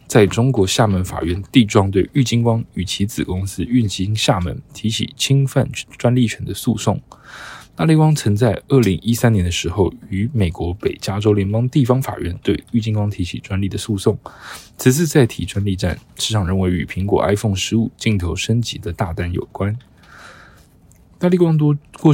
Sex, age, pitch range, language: male, 20-39, 95-120 Hz, Chinese